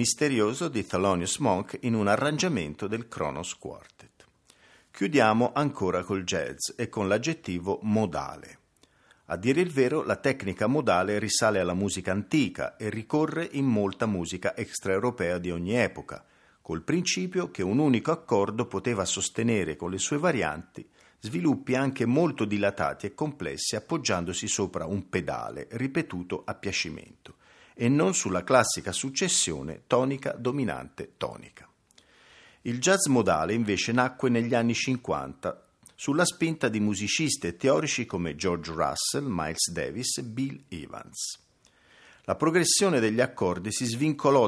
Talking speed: 130 wpm